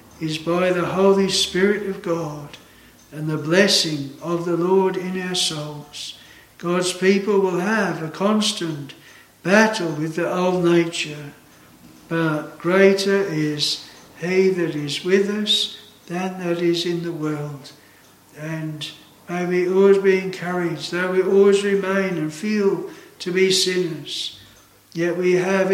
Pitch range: 165-195 Hz